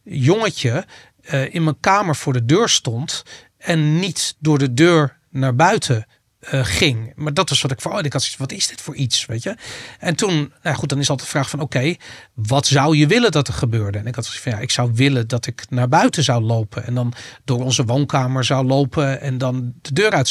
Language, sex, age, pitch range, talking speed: English, male, 40-59, 125-160 Hz, 235 wpm